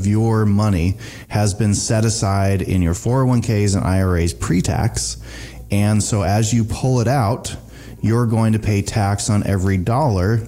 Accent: American